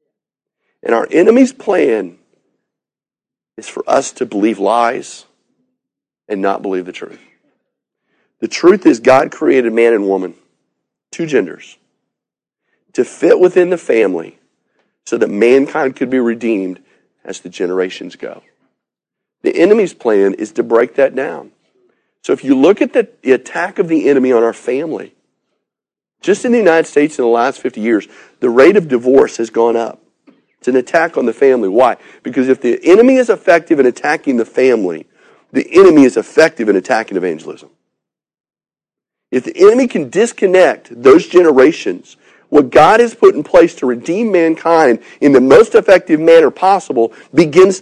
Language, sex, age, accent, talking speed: English, male, 40-59, American, 155 wpm